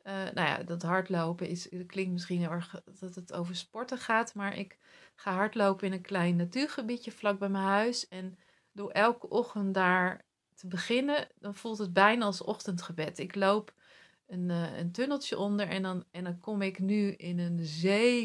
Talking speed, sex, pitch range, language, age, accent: 180 wpm, female, 180-205 Hz, Dutch, 30-49, Dutch